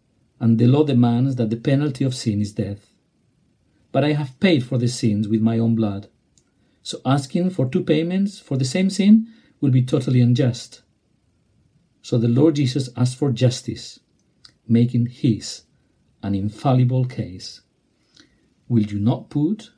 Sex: male